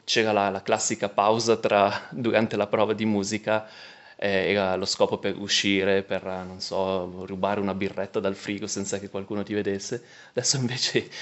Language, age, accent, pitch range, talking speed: Italian, 20-39, native, 100-115 Hz, 170 wpm